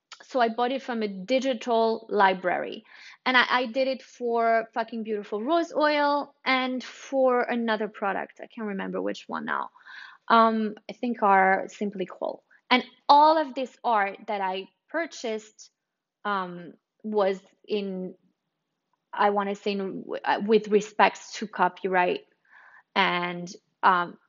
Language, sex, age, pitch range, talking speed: English, female, 20-39, 190-250 Hz, 140 wpm